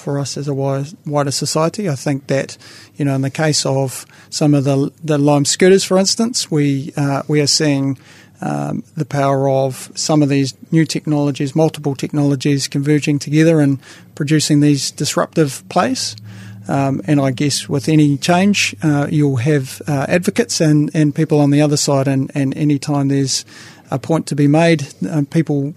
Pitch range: 135-155 Hz